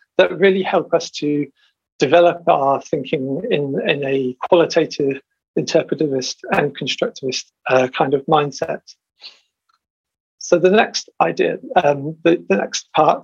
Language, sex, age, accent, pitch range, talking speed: English, male, 50-69, British, 150-190 Hz, 125 wpm